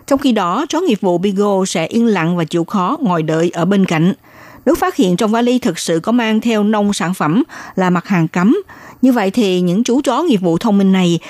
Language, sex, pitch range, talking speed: Vietnamese, female, 175-235 Hz, 245 wpm